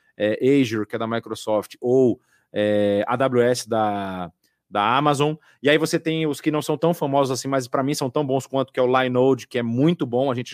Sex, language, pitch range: male, Portuguese, 125-155 Hz